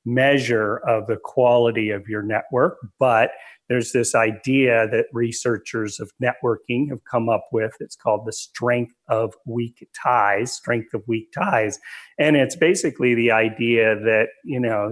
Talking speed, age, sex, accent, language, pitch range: 155 wpm, 40-59, male, American, English, 110-125 Hz